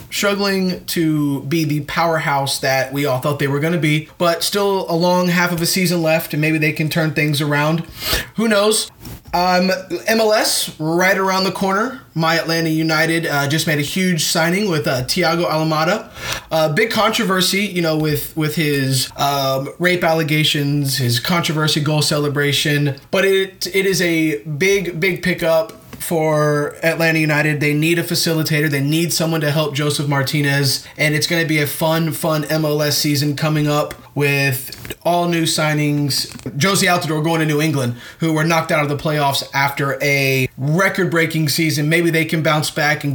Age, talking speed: 20-39, 175 wpm